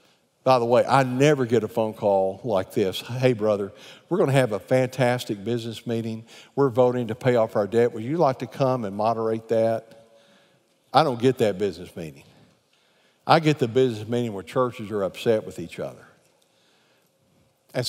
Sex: male